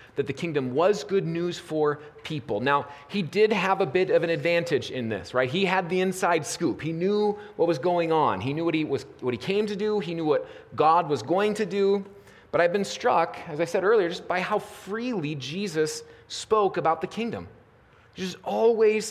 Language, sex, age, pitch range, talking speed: English, male, 30-49, 150-195 Hz, 215 wpm